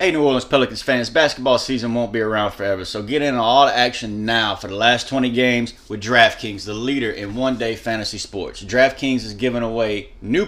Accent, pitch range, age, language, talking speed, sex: American, 115-140 Hz, 30-49, English, 210 wpm, male